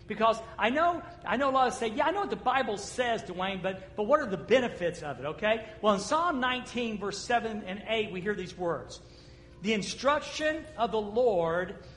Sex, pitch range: male, 205-270 Hz